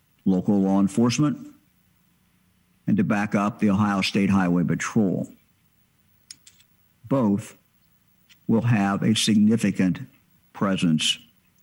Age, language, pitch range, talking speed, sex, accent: 50-69, English, 95-110 Hz, 95 wpm, male, American